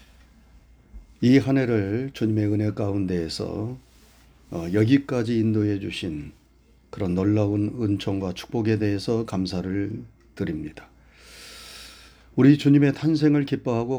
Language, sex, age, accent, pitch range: Korean, male, 40-59, native, 100-135 Hz